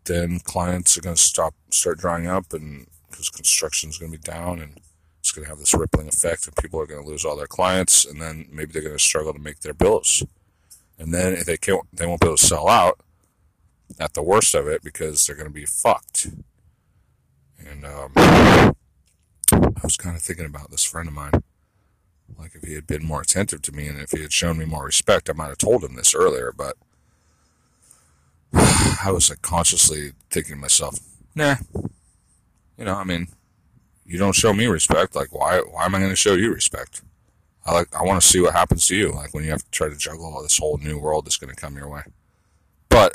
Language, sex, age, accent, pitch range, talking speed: English, male, 40-59, American, 75-95 Hz, 220 wpm